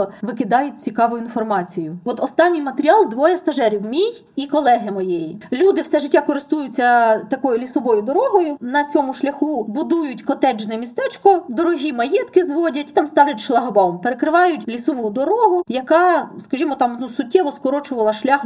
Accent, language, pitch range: native, Ukrainian, 235-320 Hz